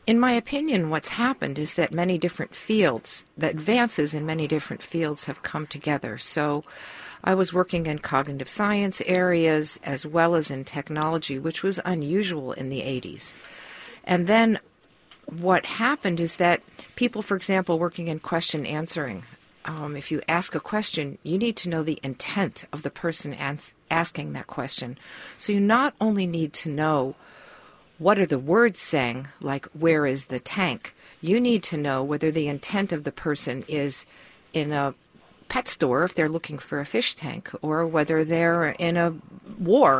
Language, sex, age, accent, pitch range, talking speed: English, female, 50-69, American, 150-185 Hz, 170 wpm